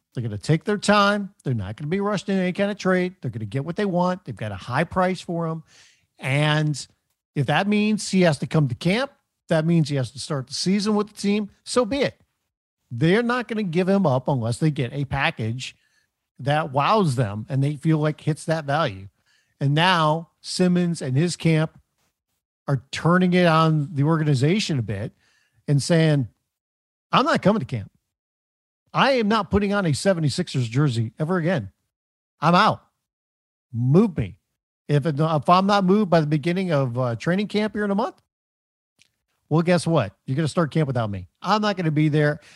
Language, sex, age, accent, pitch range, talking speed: English, male, 50-69, American, 130-180 Hz, 200 wpm